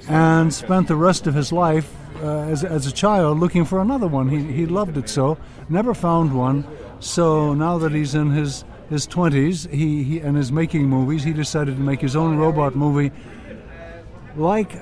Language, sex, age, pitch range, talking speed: English, male, 60-79, 135-160 Hz, 190 wpm